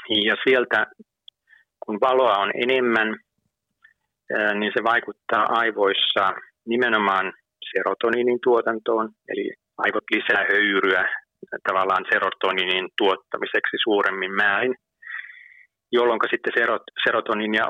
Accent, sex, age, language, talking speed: native, male, 30-49, Finnish, 85 wpm